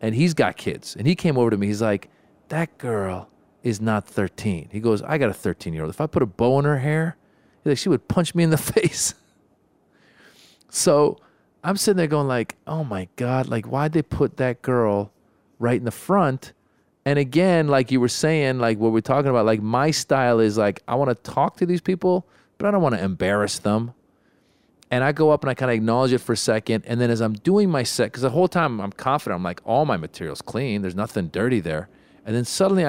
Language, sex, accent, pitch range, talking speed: English, male, American, 100-135 Hz, 235 wpm